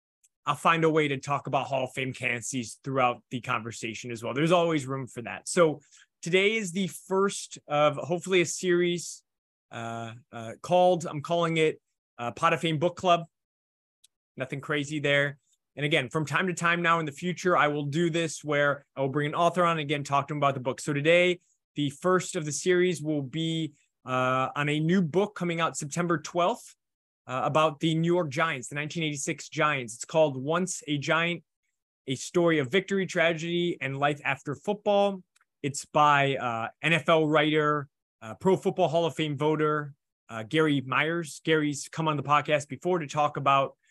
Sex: male